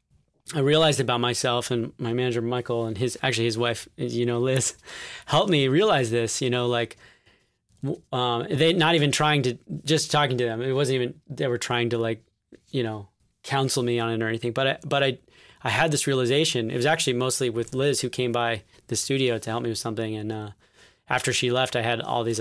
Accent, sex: American, male